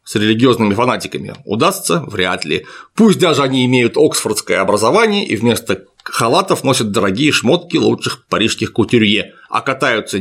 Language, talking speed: Russian, 135 wpm